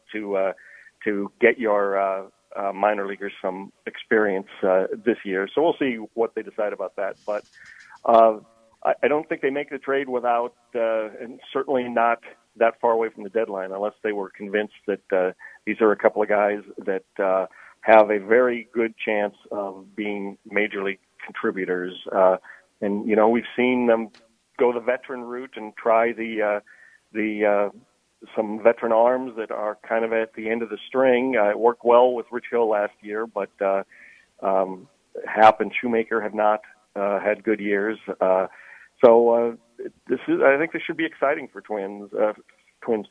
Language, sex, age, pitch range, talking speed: English, male, 40-59, 100-115 Hz, 185 wpm